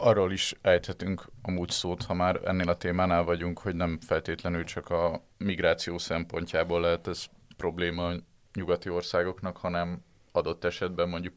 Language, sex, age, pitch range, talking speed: Hungarian, male, 20-39, 85-95 Hz, 150 wpm